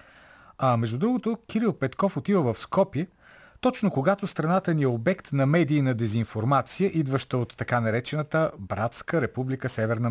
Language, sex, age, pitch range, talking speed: Bulgarian, male, 40-59, 120-180 Hz, 150 wpm